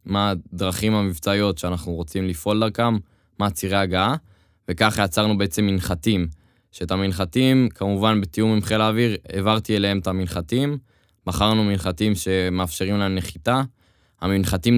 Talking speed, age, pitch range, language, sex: 125 wpm, 20-39, 95-110 Hz, Hebrew, male